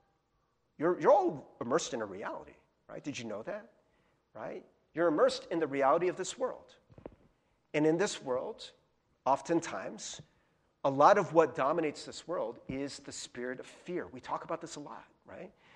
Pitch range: 155-225 Hz